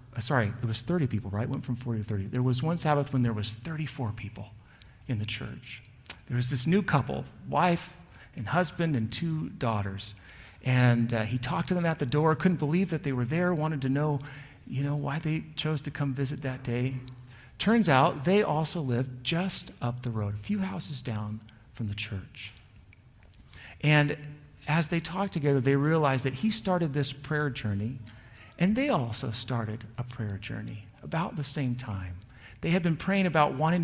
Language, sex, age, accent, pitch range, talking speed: English, male, 40-59, American, 120-160 Hz, 190 wpm